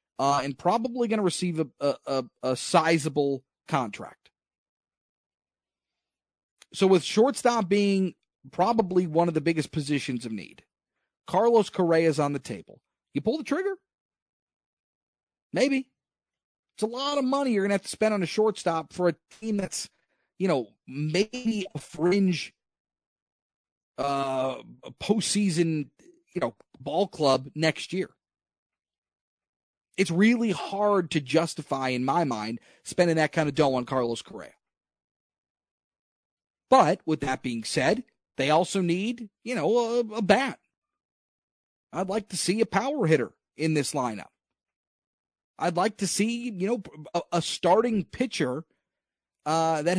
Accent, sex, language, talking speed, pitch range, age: American, male, English, 140 wpm, 155-210 Hz, 40-59